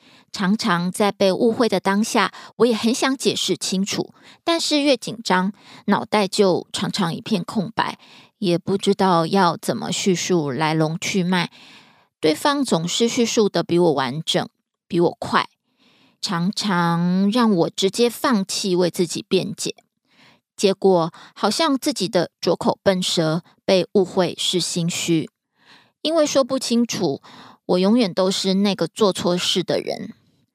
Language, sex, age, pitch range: Korean, female, 20-39, 180-230 Hz